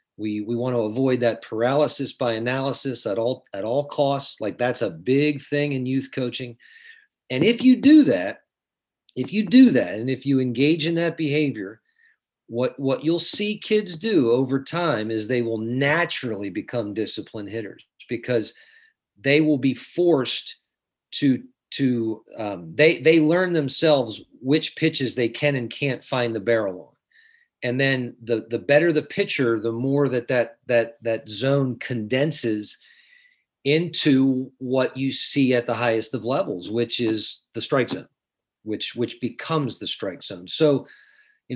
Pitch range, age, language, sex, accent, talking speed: 115-155 Hz, 40-59, English, male, American, 160 wpm